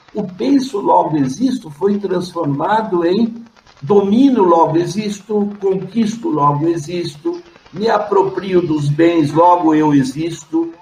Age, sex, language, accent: 60-79, male, Portuguese, Brazilian